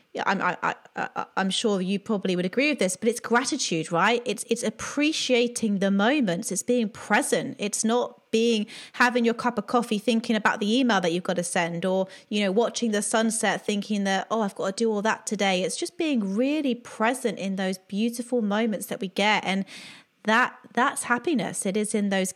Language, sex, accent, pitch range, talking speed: English, female, British, 185-235 Hz, 205 wpm